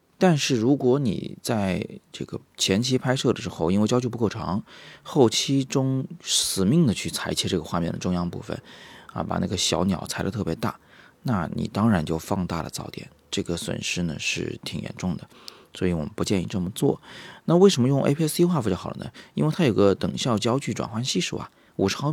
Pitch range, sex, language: 90-125 Hz, male, Chinese